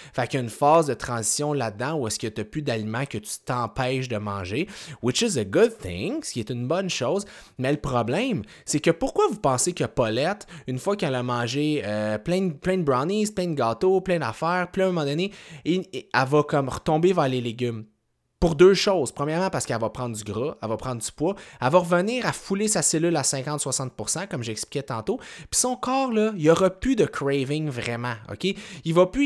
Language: French